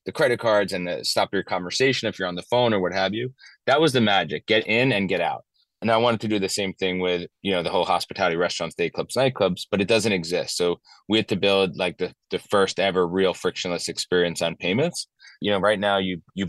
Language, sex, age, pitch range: English, male, 20-39, 90-110 Hz